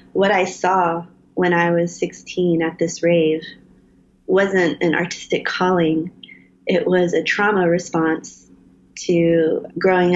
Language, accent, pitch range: English, American, 165-185 Hz